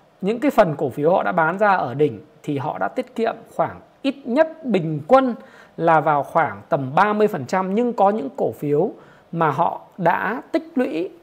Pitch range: 160-210 Hz